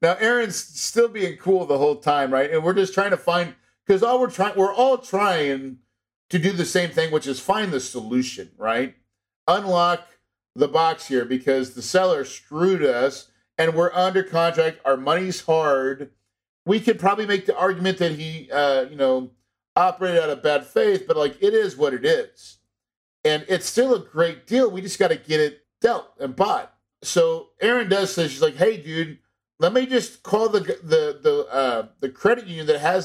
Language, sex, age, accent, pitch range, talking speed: English, male, 50-69, American, 145-210 Hz, 195 wpm